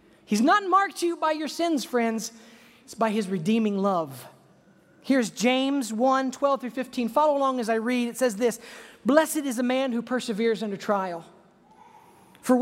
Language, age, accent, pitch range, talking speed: English, 40-59, American, 195-250 Hz, 170 wpm